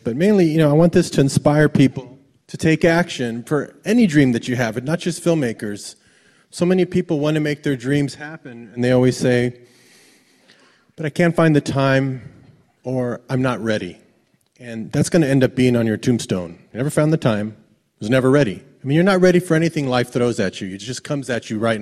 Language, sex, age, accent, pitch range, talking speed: French, male, 30-49, American, 115-145 Hz, 225 wpm